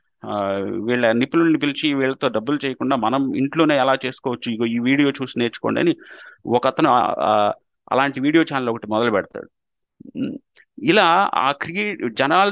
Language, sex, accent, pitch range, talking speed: Telugu, male, native, 130-170 Hz, 140 wpm